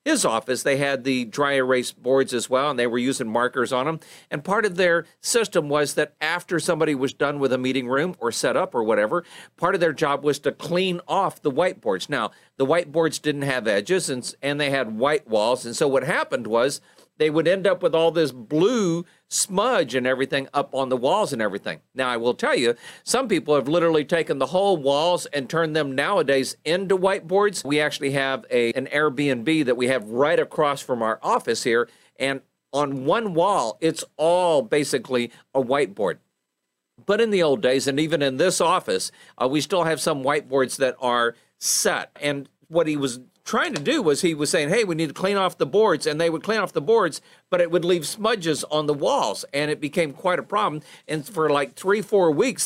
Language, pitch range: English, 135-175 Hz